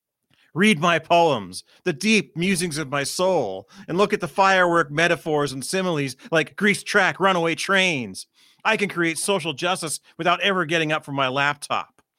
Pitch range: 140-185 Hz